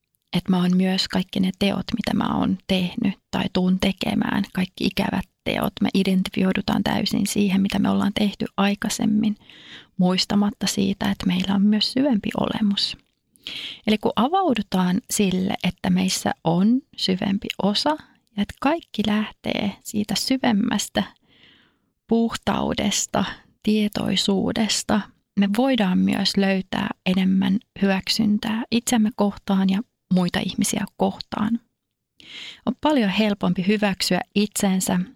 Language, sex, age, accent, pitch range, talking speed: Finnish, female, 30-49, native, 195-230 Hz, 115 wpm